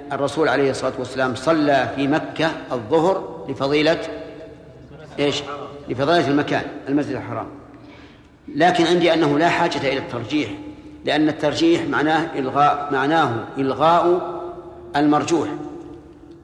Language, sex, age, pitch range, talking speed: Arabic, male, 50-69, 135-160 Hz, 100 wpm